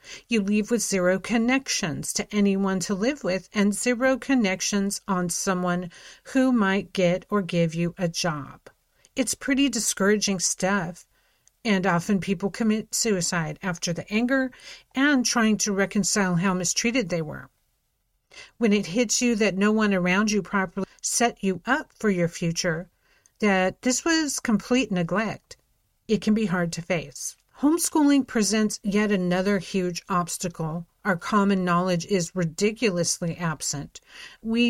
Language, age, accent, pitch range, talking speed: English, 50-69, American, 180-230 Hz, 145 wpm